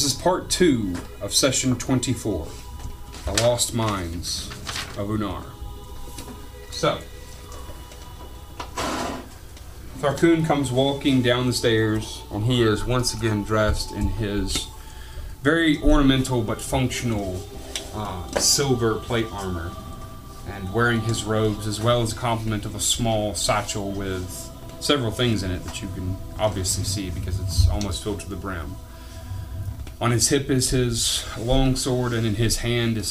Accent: American